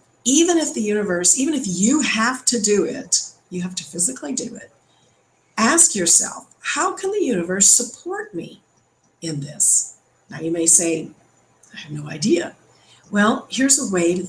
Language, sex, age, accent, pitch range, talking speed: English, female, 50-69, American, 170-230 Hz, 170 wpm